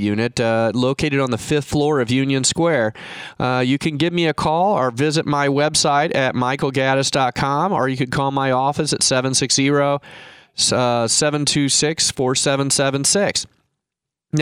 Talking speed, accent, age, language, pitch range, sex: 130 wpm, American, 30-49, English, 130-175 Hz, male